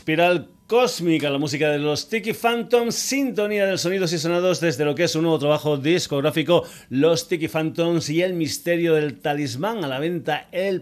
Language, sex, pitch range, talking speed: Spanish, male, 145-175 Hz, 185 wpm